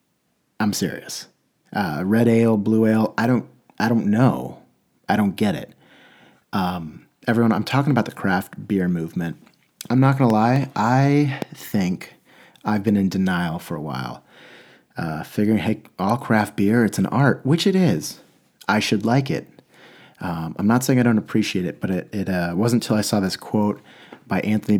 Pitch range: 95-115 Hz